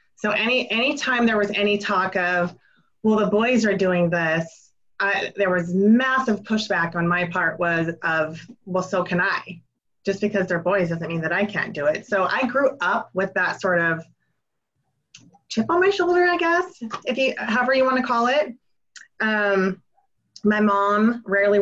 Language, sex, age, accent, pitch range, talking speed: English, female, 30-49, American, 180-220 Hz, 180 wpm